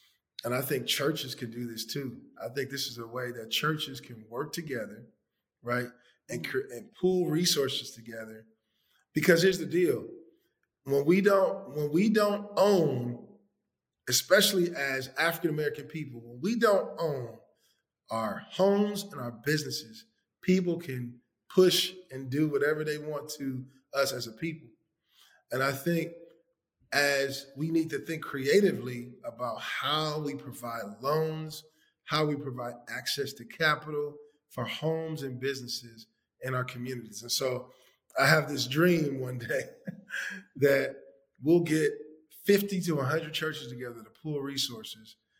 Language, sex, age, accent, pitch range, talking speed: English, male, 40-59, American, 125-165 Hz, 145 wpm